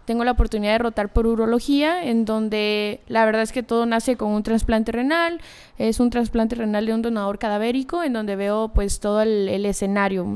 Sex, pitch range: female, 200-225 Hz